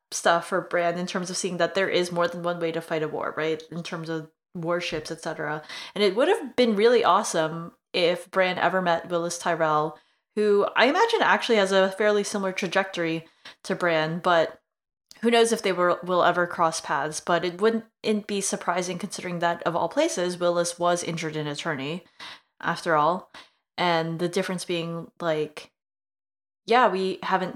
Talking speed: 180 wpm